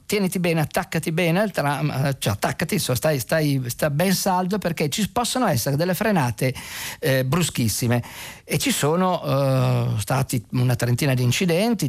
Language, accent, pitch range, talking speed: Italian, native, 125-165 Hz, 145 wpm